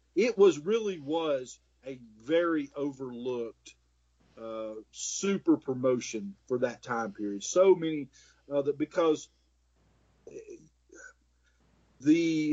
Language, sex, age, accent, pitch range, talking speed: English, male, 40-59, American, 130-200 Hz, 95 wpm